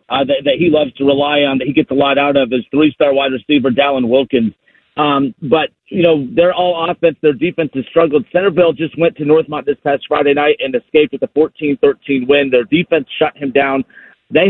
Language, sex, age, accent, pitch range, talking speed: English, male, 50-69, American, 135-165 Hz, 220 wpm